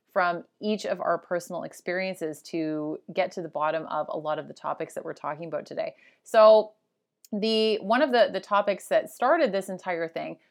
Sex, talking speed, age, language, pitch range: female, 195 wpm, 30-49, English, 175-220 Hz